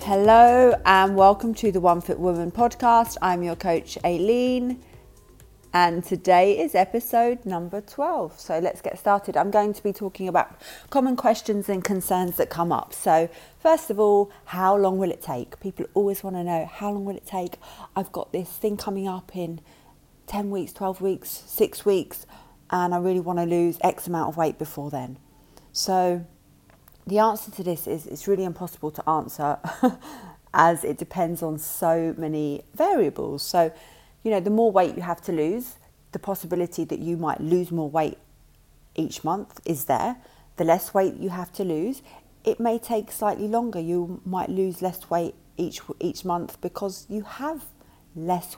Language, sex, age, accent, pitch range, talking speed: English, female, 30-49, British, 170-205 Hz, 180 wpm